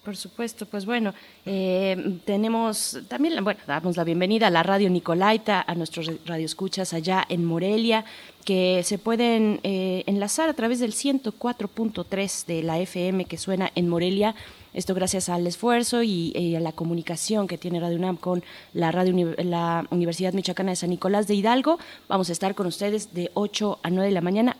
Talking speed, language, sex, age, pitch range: 180 wpm, Italian, female, 20-39, 180-225 Hz